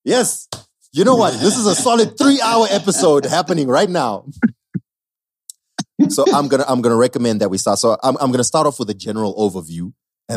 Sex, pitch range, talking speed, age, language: male, 100-150 Hz, 210 wpm, 30-49, English